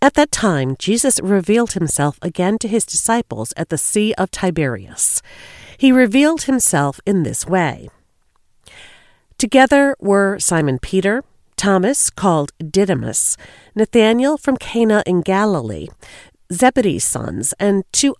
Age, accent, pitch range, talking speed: 40-59, American, 165-245 Hz, 120 wpm